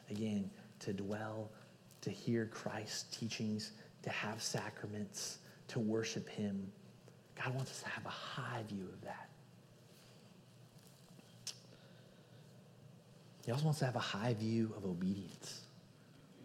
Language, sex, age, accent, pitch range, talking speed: English, male, 30-49, American, 120-195 Hz, 120 wpm